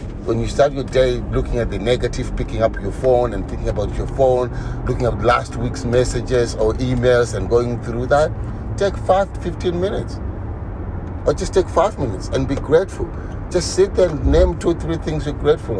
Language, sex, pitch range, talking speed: English, male, 110-155 Hz, 200 wpm